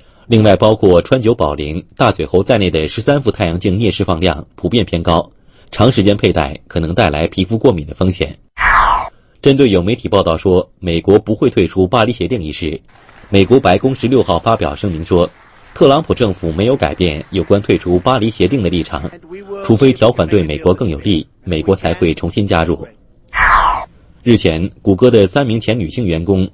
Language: English